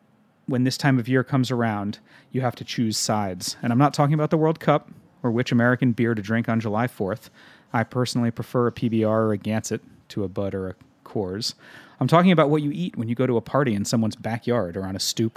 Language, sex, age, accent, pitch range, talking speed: English, male, 30-49, American, 110-135 Hz, 240 wpm